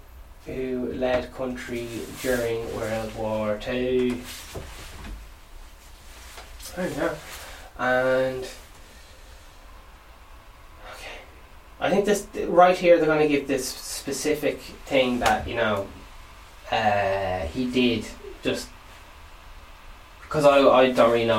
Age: 10-29